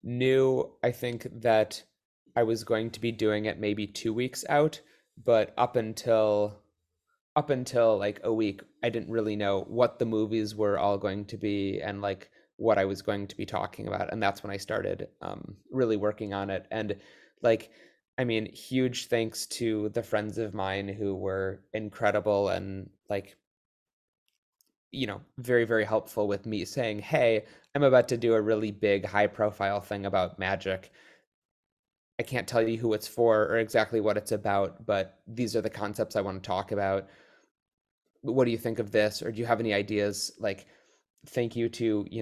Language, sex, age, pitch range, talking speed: English, male, 20-39, 100-115 Hz, 185 wpm